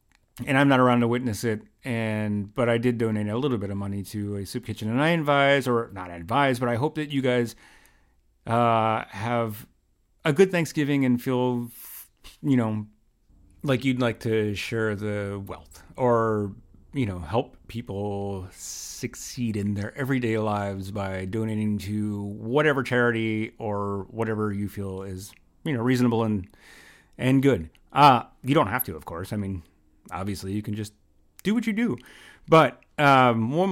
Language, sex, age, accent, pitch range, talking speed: English, male, 30-49, American, 105-130 Hz, 170 wpm